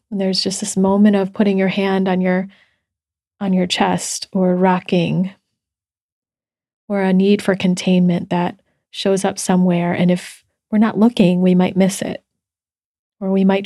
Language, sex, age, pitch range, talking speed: English, female, 30-49, 180-210 Hz, 165 wpm